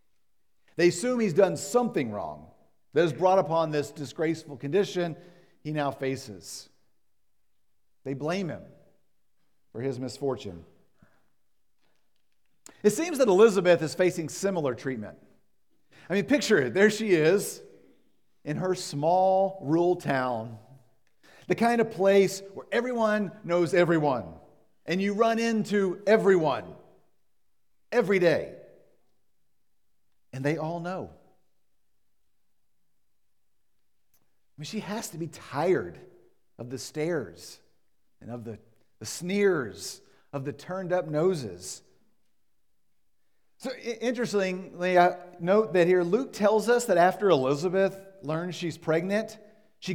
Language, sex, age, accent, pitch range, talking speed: English, male, 50-69, American, 145-205 Hz, 110 wpm